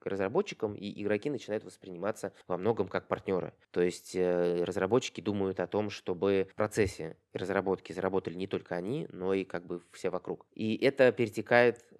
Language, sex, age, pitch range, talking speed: Russian, male, 20-39, 95-105 Hz, 160 wpm